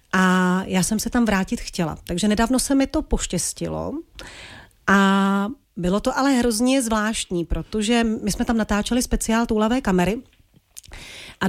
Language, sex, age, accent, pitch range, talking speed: Czech, female, 40-59, native, 205-250 Hz, 145 wpm